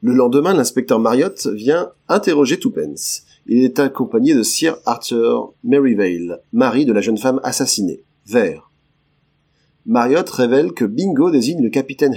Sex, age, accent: male, 40-59, French